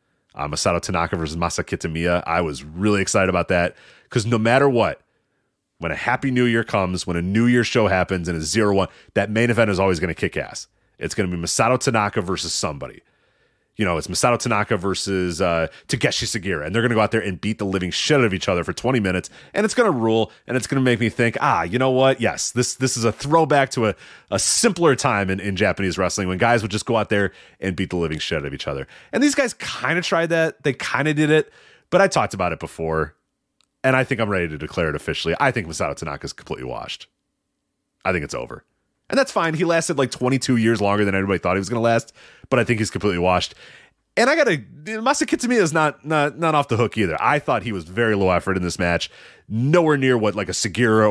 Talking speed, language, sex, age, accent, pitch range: 250 wpm, English, male, 30-49, American, 95-125 Hz